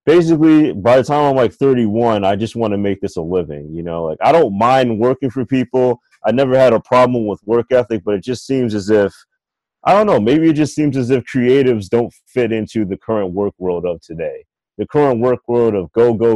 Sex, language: male, English